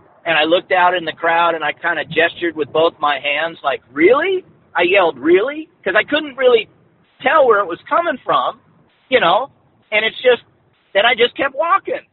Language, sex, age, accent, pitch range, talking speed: English, male, 50-69, American, 155-200 Hz, 205 wpm